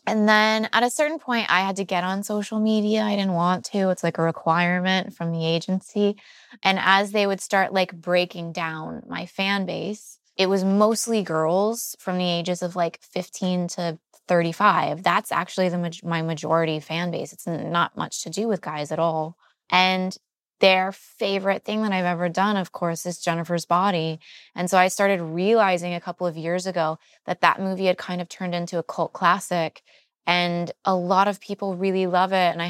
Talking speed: 195 wpm